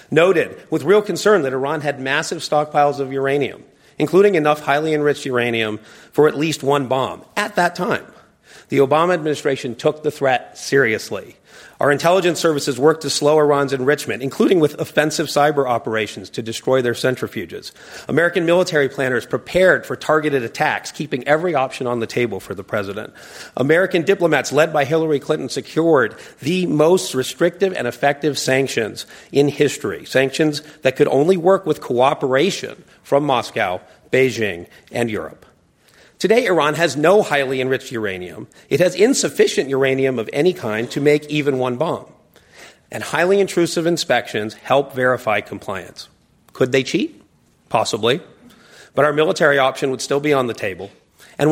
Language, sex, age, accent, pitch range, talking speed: English, male, 40-59, American, 130-160 Hz, 155 wpm